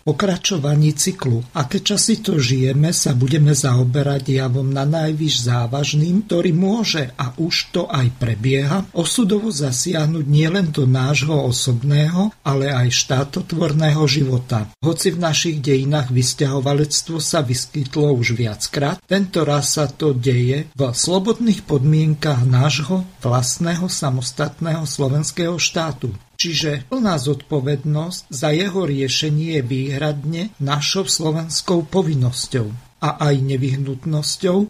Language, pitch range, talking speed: Slovak, 135-170 Hz, 115 wpm